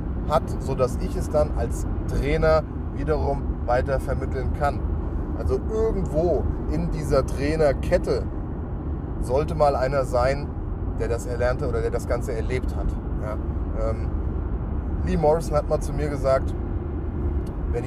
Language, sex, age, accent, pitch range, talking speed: German, male, 30-49, German, 75-95 Hz, 130 wpm